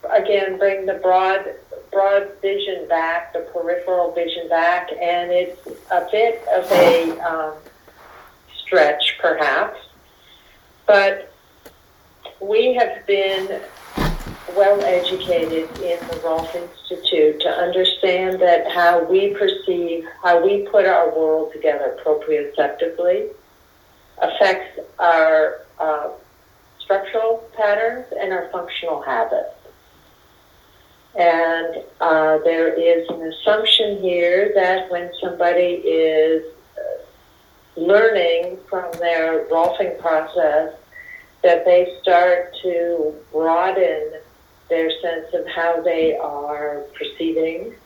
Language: English